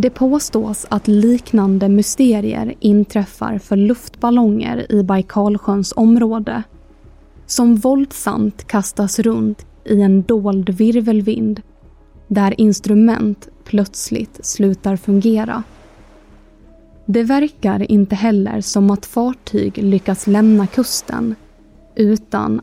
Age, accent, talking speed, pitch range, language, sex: 20-39, native, 95 wpm, 200-225 Hz, Swedish, female